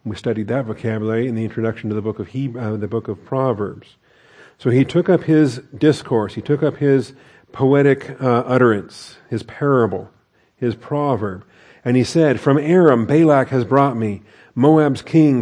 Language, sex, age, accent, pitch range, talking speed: English, male, 40-59, American, 115-155 Hz, 175 wpm